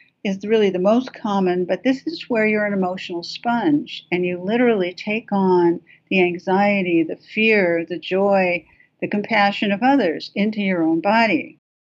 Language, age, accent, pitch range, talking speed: English, 60-79, American, 180-230 Hz, 160 wpm